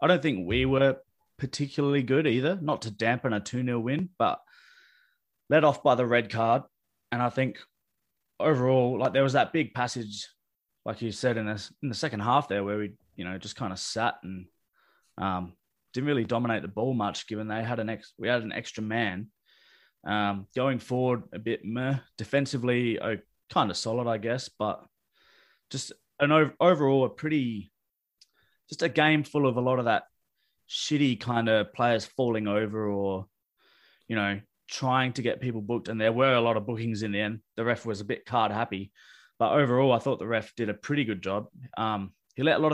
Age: 20-39